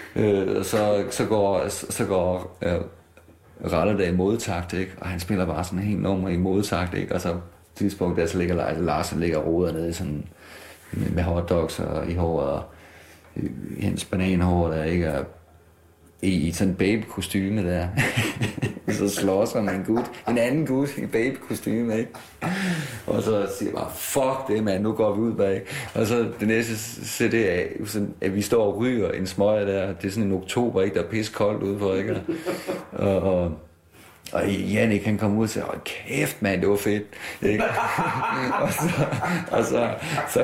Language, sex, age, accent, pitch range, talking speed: Danish, male, 30-49, native, 90-110 Hz, 175 wpm